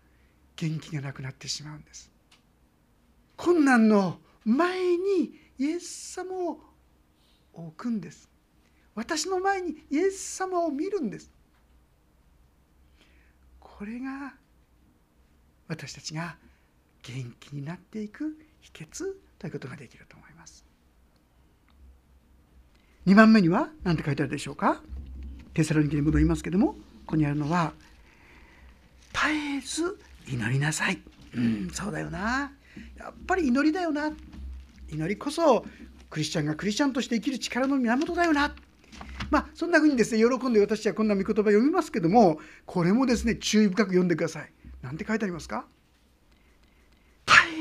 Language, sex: Japanese, male